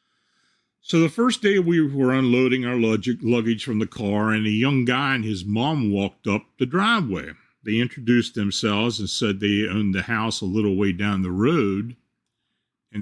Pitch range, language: 100-125 Hz, English